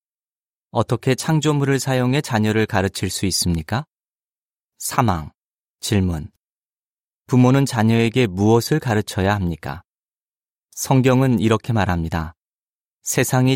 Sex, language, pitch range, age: male, Korean, 95-125 Hz, 30-49